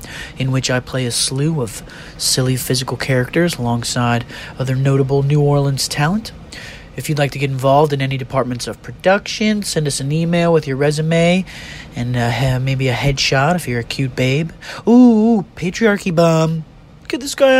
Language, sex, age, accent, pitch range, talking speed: English, male, 30-49, American, 130-170 Hz, 170 wpm